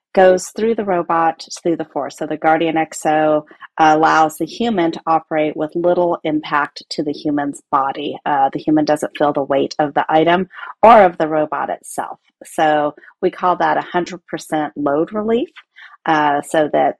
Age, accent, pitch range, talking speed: 30-49, American, 150-175 Hz, 170 wpm